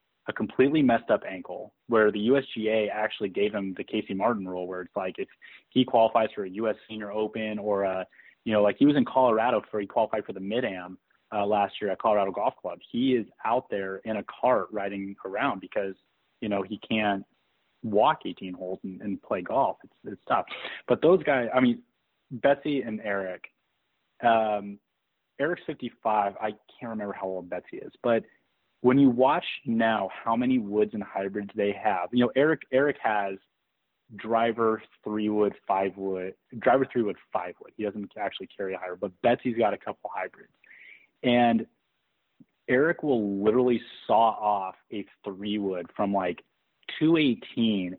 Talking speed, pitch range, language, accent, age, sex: 175 wpm, 100-115 Hz, English, American, 30-49, male